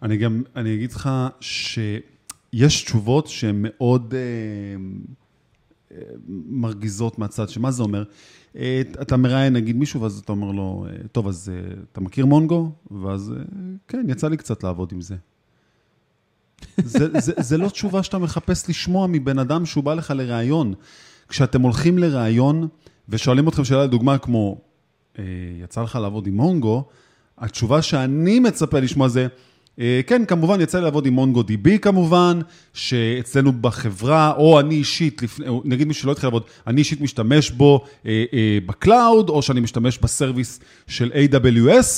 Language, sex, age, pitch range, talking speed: Hebrew, male, 30-49, 115-160 Hz, 150 wpm